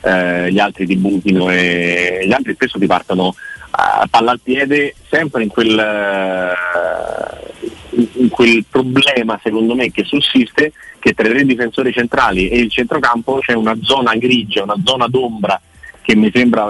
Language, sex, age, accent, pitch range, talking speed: Italian, male, 30-49, native, 100-130 Hz, 170 wpm